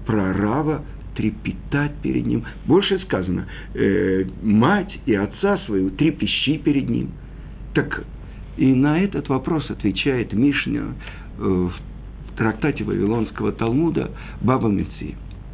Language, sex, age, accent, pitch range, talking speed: Russian, male, 50-69, native, 100-165 Hz, 110 wpm